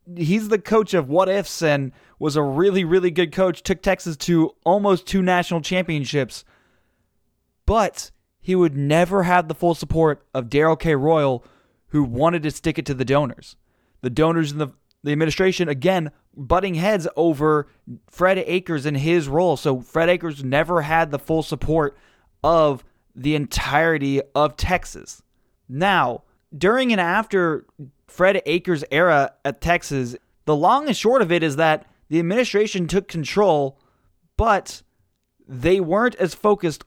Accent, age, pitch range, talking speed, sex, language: American, 20-39, 150-190 Hz, 150 wpm, male, English